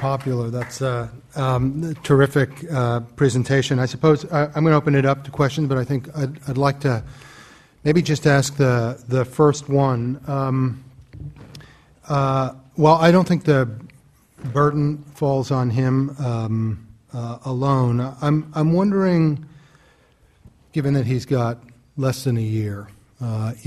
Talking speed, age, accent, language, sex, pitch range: 145 wpm, 40-59, American, English, male, 120-145 Hz